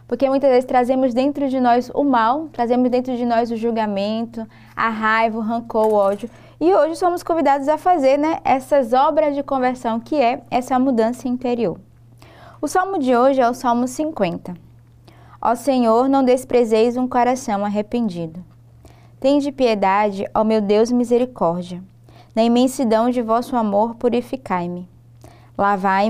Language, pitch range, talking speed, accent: Portuguese, 195-250 Hz, 150 wpm, Brazilian